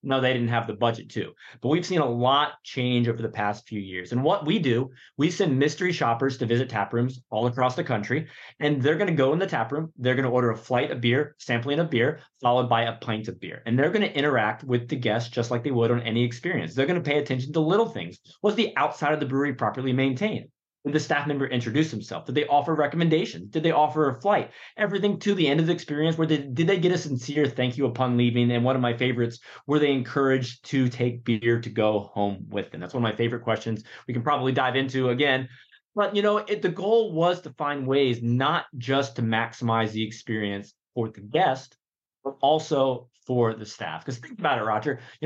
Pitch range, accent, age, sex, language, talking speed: 120-150 Hz, American, 30-49, male, English, 235 wpm